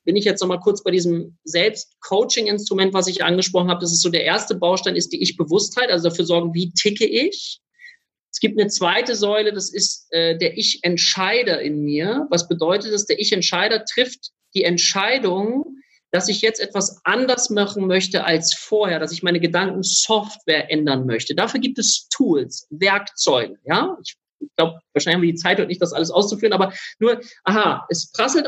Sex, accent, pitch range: male, German, 175-220 Hz